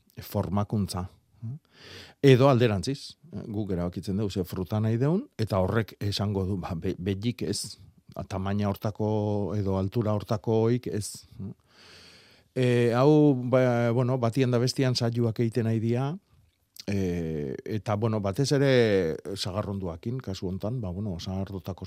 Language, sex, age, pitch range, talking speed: Spanish, male, 40-59, 95-120 Hz, 125 wpm